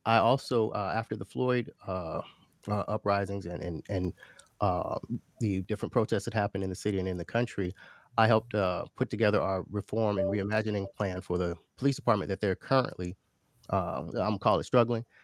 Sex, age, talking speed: male, 30-49, 185 wpm